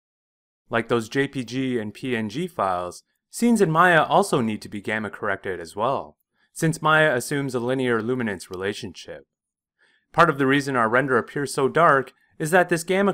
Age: 30-49